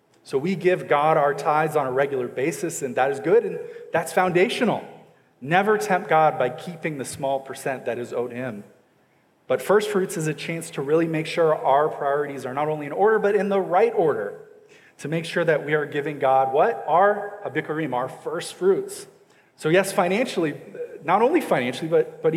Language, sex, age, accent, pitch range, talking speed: English, male, 30-49, American, 135-185 Hz, 195 wpm